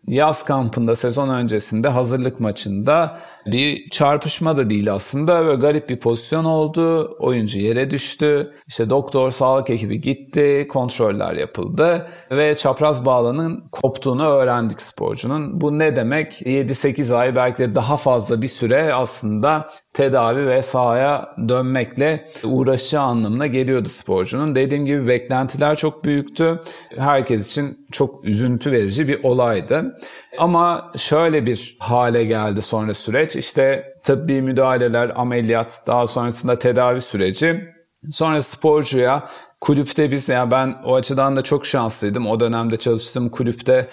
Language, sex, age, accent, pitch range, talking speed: Turkish, male, 40-59, native, 120-145 Hz, 130 wpm